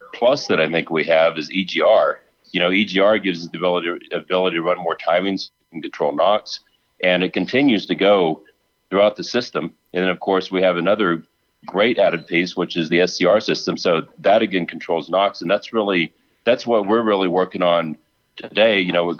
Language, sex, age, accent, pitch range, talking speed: English, male, 40-59, American, 90-105 Hz, 200 wpm